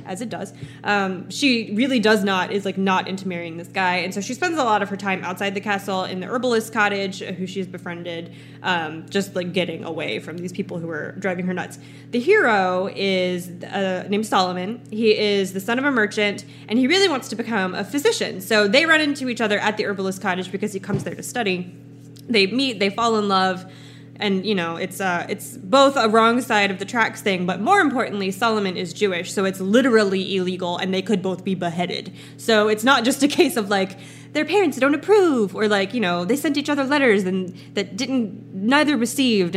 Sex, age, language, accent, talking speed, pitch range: female, 20-39, English, American, 220 wpm, 185-230 Hz